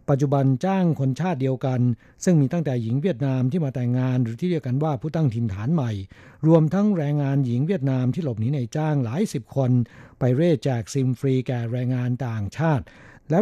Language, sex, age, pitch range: Thai, male, 60-79, 125-155 Hz